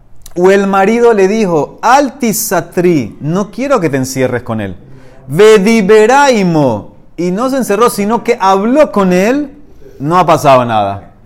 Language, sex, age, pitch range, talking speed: Spanish, male, 30-49, 130-205 Hz, 145 wpm